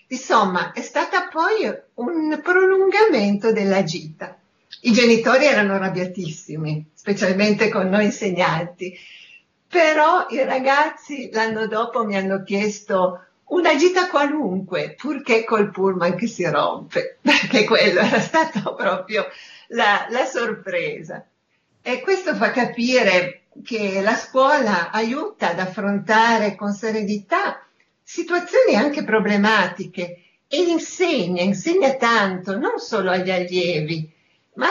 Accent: native